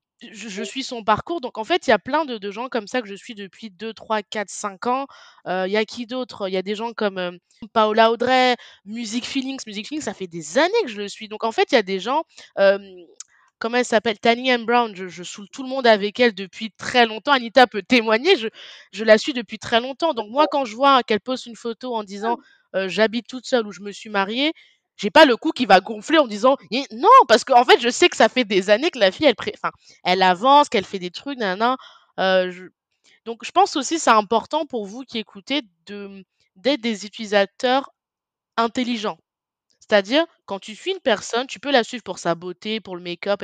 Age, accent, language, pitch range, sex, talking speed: 20-39, French, French, 205-260 Hz, female, 245 wpm